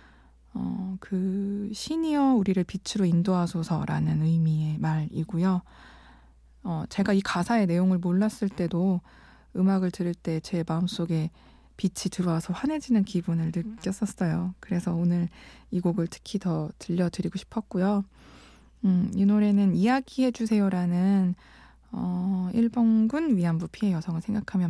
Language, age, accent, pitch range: Korean, 20-39, native, 170-205 Hz